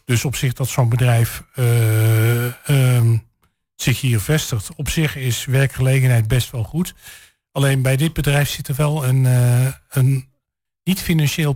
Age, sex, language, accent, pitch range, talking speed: 50-69, male, Dutch, Dutch, 125-155 Hz, 150 wpm